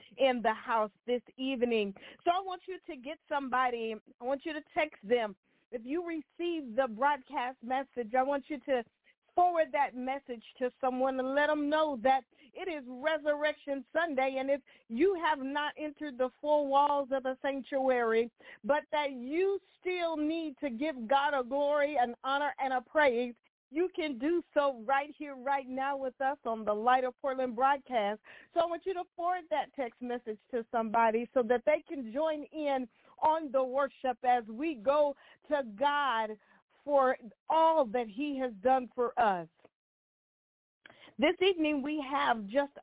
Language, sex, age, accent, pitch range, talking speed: English, female, 40-59, American, 245-300 Hz, 170 wpm